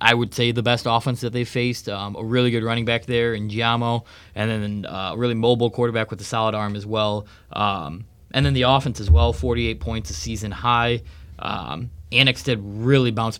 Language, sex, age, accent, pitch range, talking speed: English, male, 20-39, American, 100-120 Hz, 215 wpm